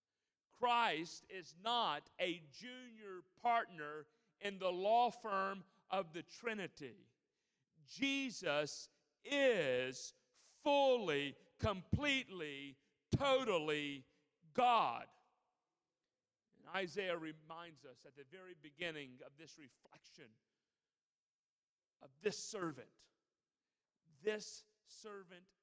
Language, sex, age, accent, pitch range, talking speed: English, male, 40-59, American, 150-195 Hz, 80 wpm